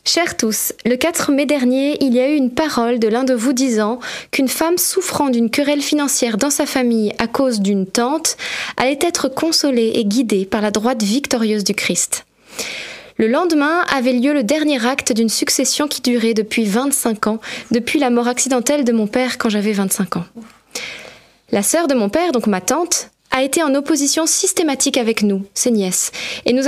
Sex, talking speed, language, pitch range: female, 190 wpm, French, 230-290 Hz